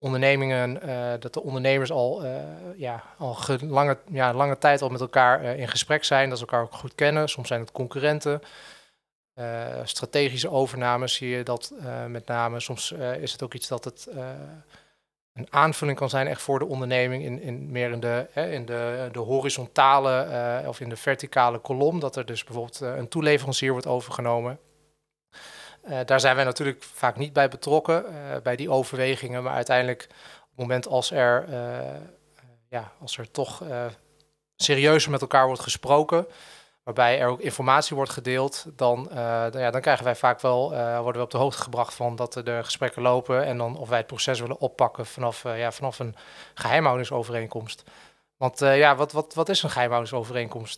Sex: male